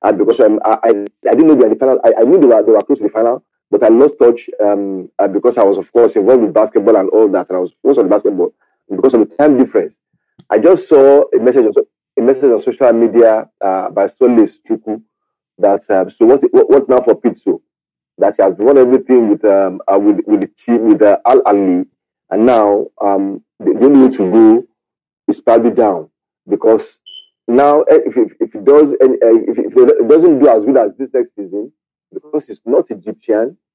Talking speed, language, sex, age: 225 wpm, English, male, 40-59